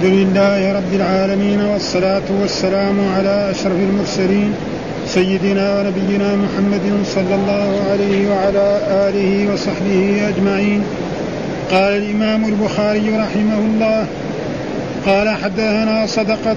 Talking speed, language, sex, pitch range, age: 100 wpm, Arabic, male, 205-225 Hz, 50-69